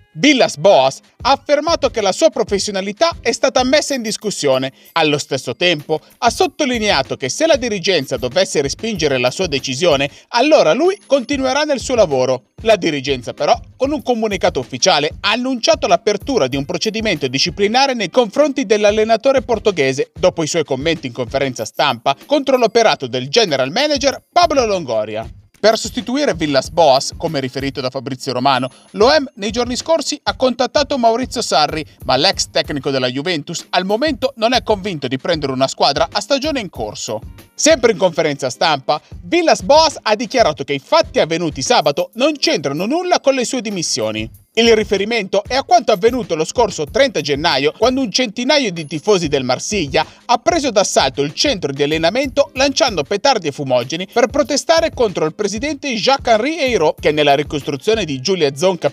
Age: 30-49